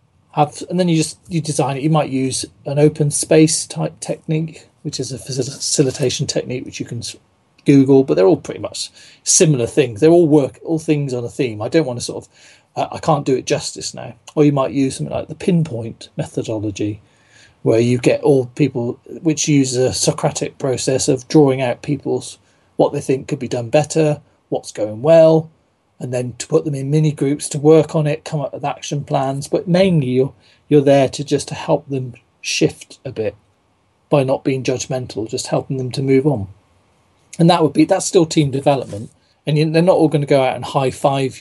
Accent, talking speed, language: British, 210 wpm, English